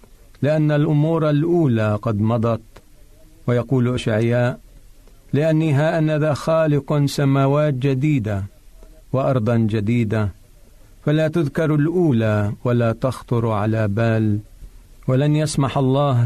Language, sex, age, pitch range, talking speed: Arabic, male, 50-69, 110-135 Hz, 90 wpm